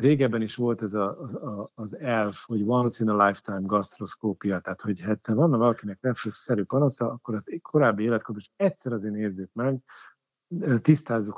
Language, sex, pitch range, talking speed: Hungarian, male, 100-120 Hz, 165 wpm